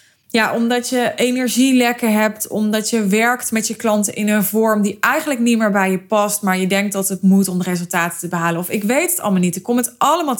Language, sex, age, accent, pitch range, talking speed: Dutch, female, 20-39, Dutch, 190-230 Hz, 240 wpm